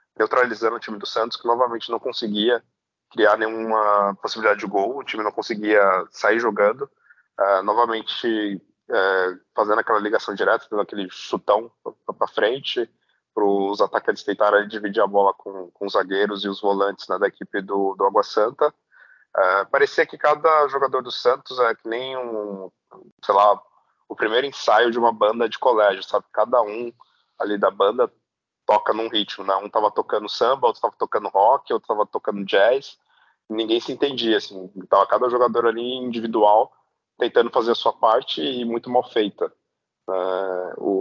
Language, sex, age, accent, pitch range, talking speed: Portuguese, male, 20-39, Brazilian, 100-120 Hz, 170 wpm